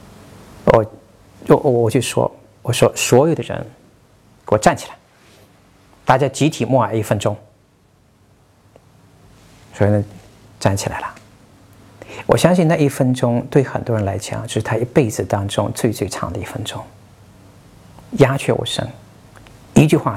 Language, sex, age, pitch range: Chinese, male, 50-69, 105-135 Hz